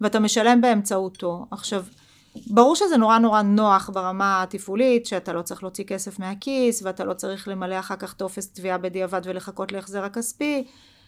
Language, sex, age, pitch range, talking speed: Hebrew, female, 30-49, 190-245 Hz, 155 wpm